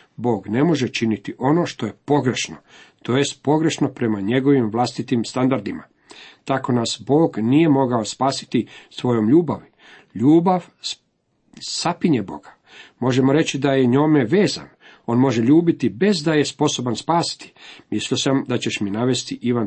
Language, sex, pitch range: Croatian, male, 120-155 Hz